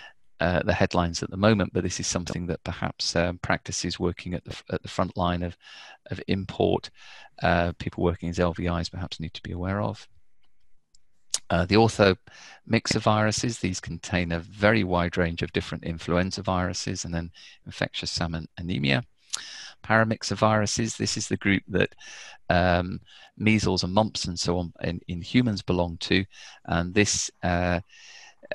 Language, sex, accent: English, male, British